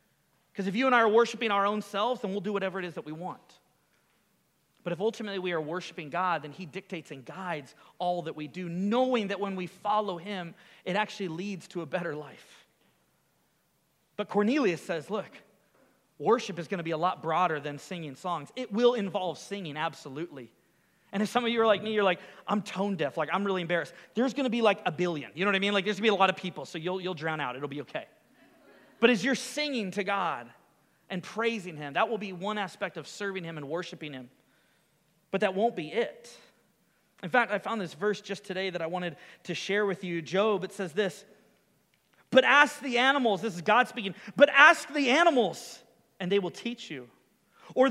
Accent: American